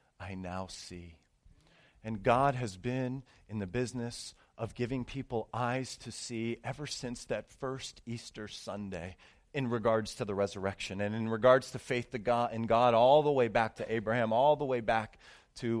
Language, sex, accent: English, male, American